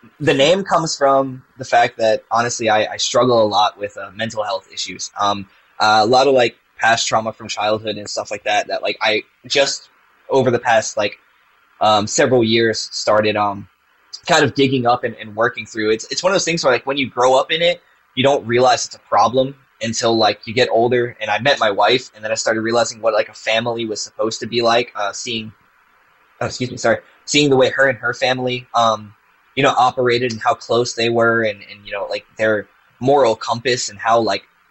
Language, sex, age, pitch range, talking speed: English, male, 10-29, 110-130 Hz, 225 wpm